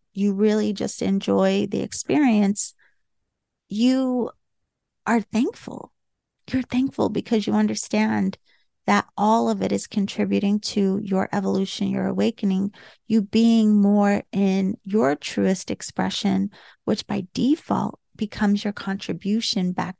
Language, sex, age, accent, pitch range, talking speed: English, female, 30-49, American, 195-225 Hz, 115 wpm